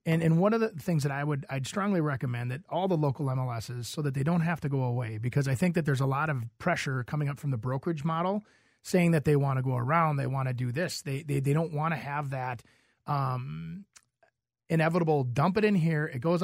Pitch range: 140-175 Hz